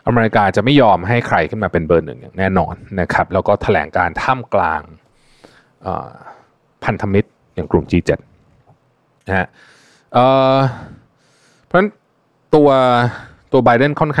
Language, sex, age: Thai, male, 20-39